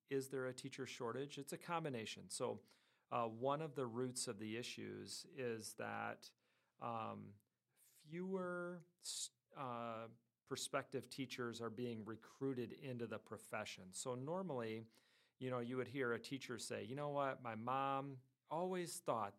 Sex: male